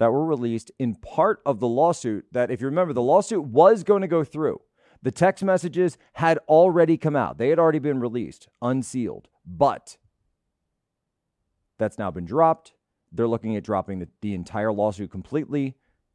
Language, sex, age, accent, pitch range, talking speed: English, male, 40-59, American, 110-160 Hz, 170 wpm